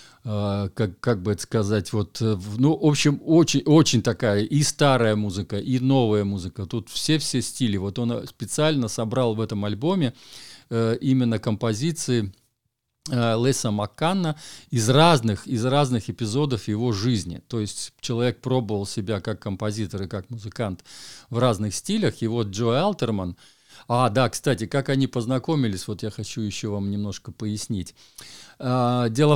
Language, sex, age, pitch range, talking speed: Russian, male, 50-69, 110-135 Hz, 150 wpm